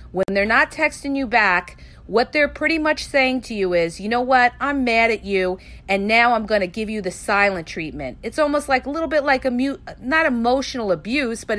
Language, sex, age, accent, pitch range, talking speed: English, female, 40-59, American, 200-275 Hz, 230 wpm